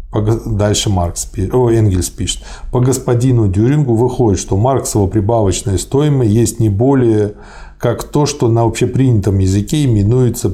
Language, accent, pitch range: Russian, native, 105-130 Hz